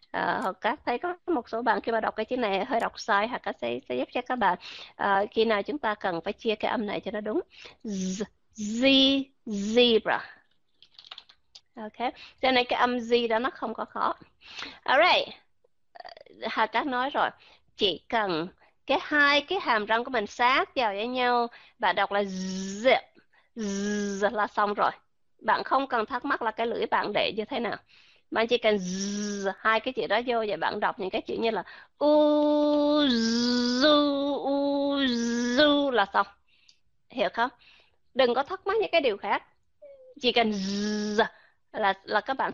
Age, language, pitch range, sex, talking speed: 20-39, Vietnamese, 210-270 Hz, female, 190 wpm